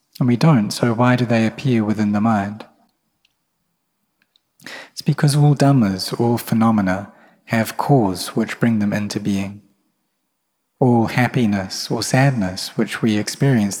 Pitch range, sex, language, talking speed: 105-130 Hz, male, English, 135 wpm